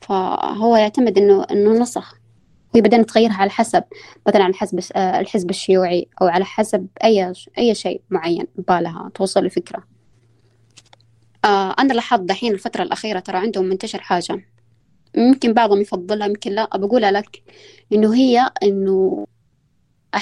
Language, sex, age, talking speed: Arabic, female, 20-39, 130 wpm